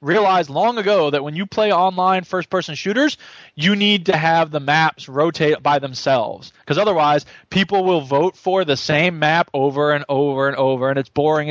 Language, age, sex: English, 20-39, male